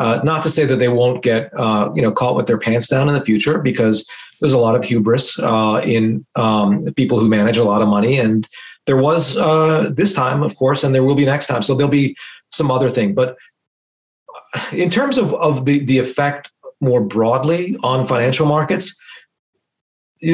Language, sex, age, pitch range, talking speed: English, male, 40-59, 110-145 Hz, 205 wpm